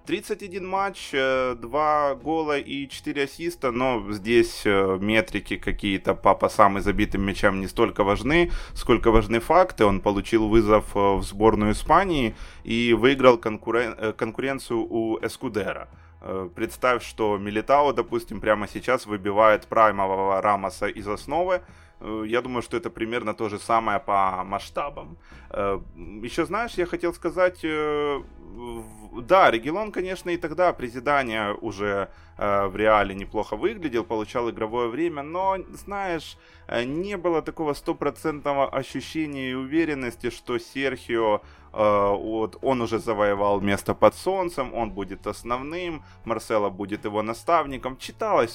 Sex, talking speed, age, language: male, 125 wpm, 20-39, Ukrainian